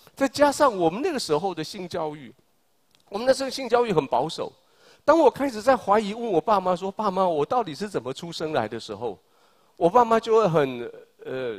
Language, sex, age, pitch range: Chinese, male, 40-59, 155-235 Hz